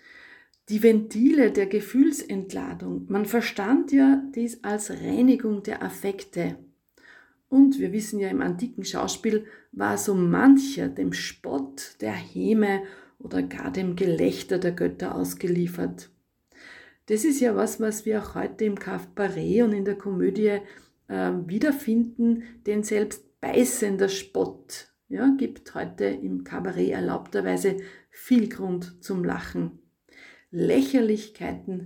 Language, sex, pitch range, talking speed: German, female, 185-250 Hz, 120 wpm